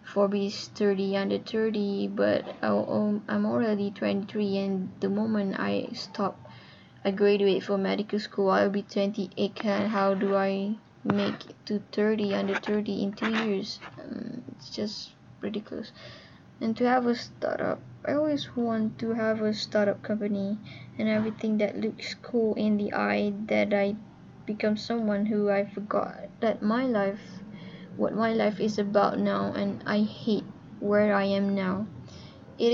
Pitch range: 195-220 Hz